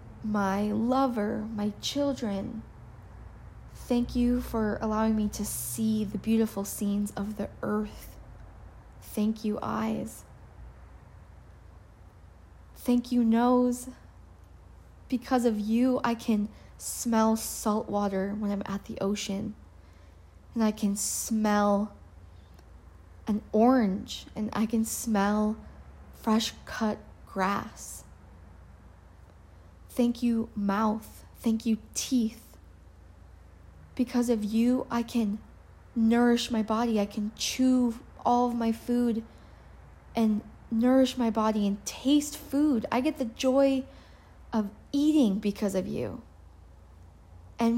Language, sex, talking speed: English, female, 110 wpm